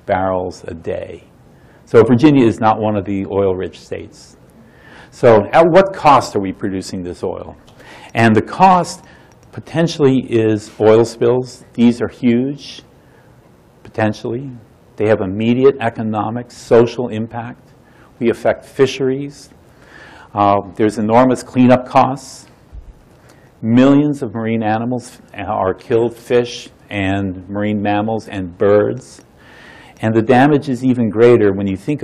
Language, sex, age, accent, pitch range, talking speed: English, male, 50-69, American, 105-130 Hz, 125 wpm